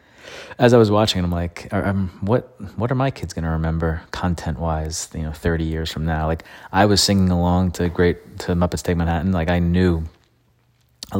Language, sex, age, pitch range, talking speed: English, male, 30-49, 80-95 Hz, 200 wpm